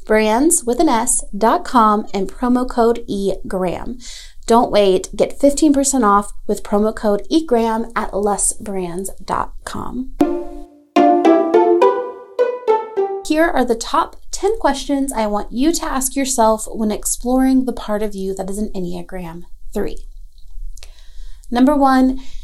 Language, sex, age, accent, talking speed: English, female, 30-49, American, 120 wpm